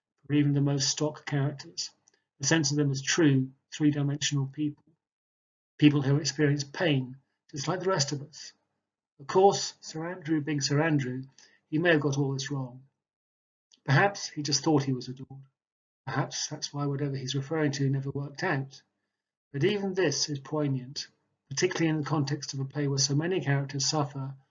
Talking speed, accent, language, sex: 175 wpm, British, English, male